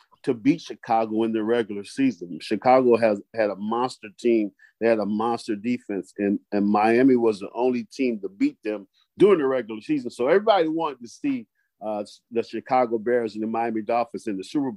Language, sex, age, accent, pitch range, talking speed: English, male, 50-69, American, 105-120 Hz, 195 wpm